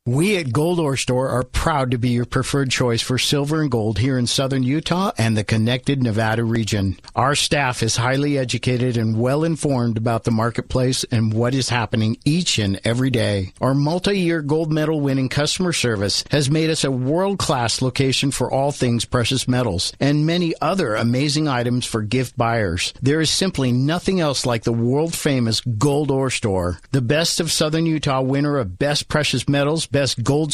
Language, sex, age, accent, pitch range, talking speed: English, male, 50-69, American, 115-150 Hz, 190 wpm